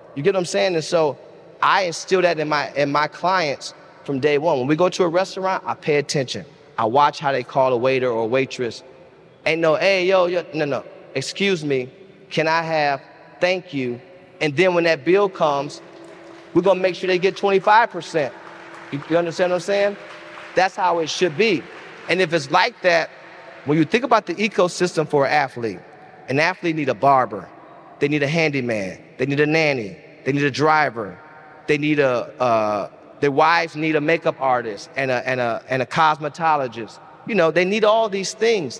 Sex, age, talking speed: male, 30-49, 200 wpm